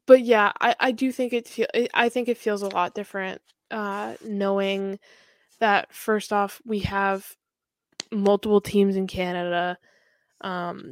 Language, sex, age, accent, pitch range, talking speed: English, female, 10-29, American, 195-230 Hz, 150 wpm